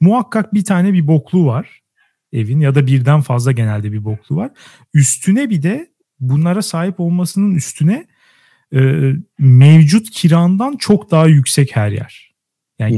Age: 40-59